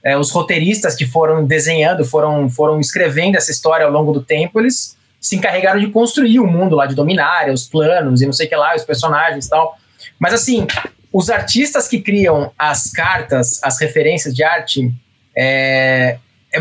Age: 20-39